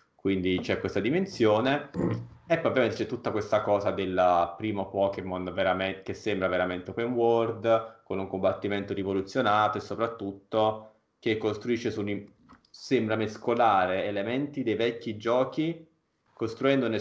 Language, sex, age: Italian, male, 20-39